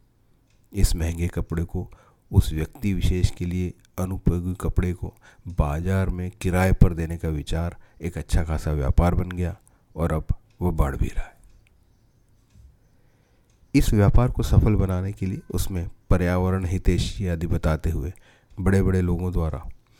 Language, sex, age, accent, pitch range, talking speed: Hindi, male, 40-59, native, 80-100 Hz, 145 wpm